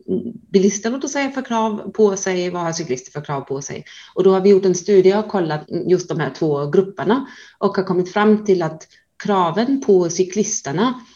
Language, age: Swedish, 30-49